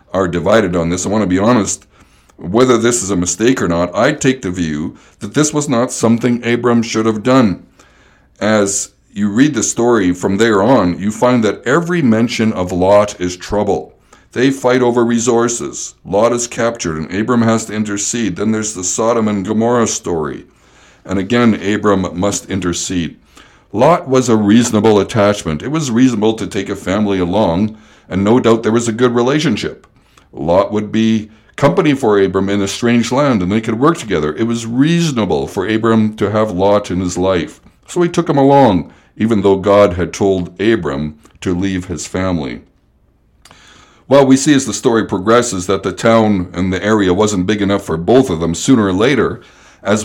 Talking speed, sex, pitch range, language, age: 185 wpm, male, 95-120 Hz, English, 60-79